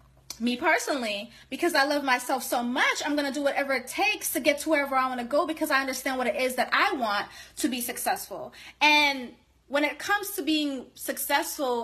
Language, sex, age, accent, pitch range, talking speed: English, female, 20-39, American, 240-295 Hz, 215 wpm